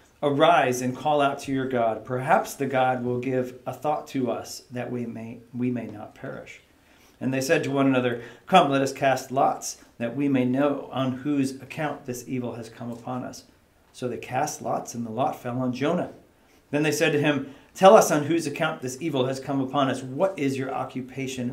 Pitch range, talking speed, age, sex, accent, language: 125-150 Hz, 215 wpm, 40-59, male, American, English